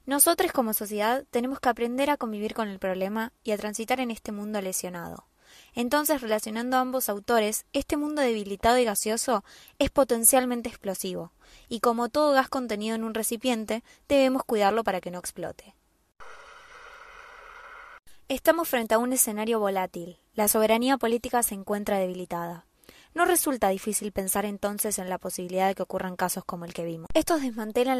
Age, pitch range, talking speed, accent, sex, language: 20-39, 205-260 Hz, 160 wpm, Argentinian, female, Spanish